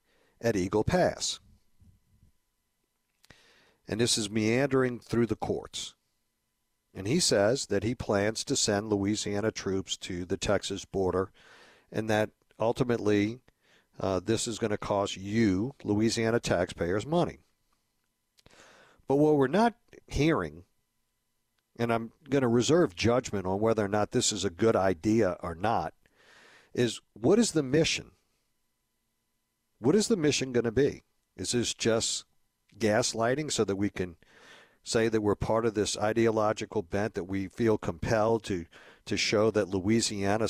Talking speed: 140 wpm